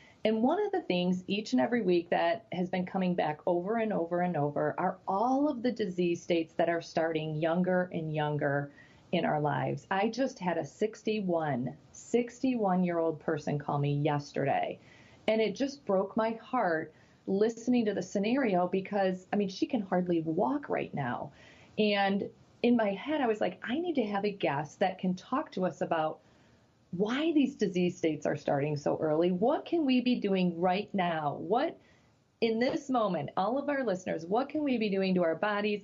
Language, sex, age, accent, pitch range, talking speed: English, female, 40-59, American, 165-220 Hz, 190 wpm